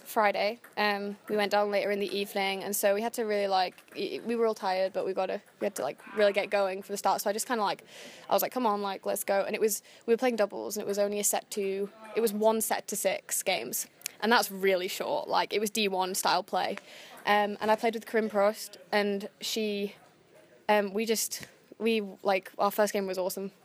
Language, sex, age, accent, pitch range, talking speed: English, female, 10-29, British, 195-220 Hz, 250 wpm